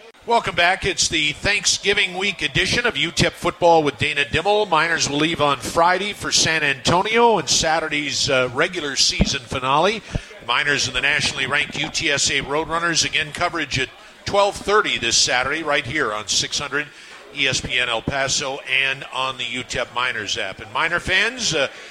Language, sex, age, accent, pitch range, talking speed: English, male, 50-69, American, 145-195 Hz, 155 wpm